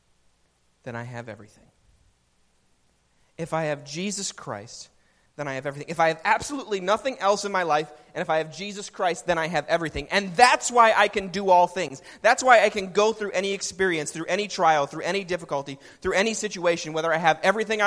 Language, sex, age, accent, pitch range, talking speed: English, male, 30-49, American, 120-185 Hz, 205 wpm